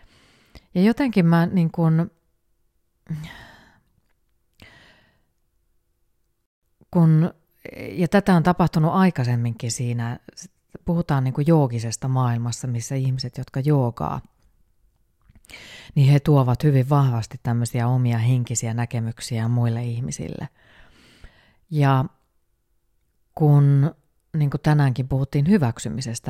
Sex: female